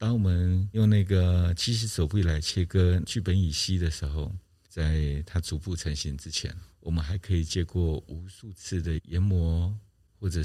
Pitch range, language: 80-100 Hz, Chinese